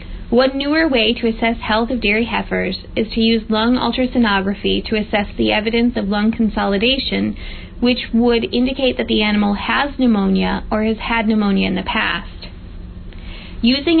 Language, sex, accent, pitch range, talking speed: English, female, American, 190-245 Hz, 160 wpm